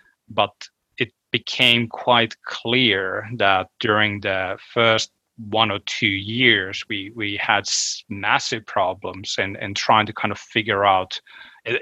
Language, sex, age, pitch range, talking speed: English, male, 30-49, 105-120 Hz, 135 wpm